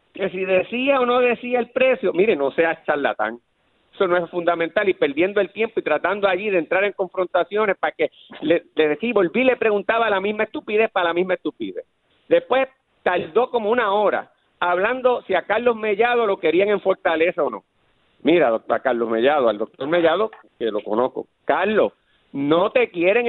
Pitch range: 185-255 Hz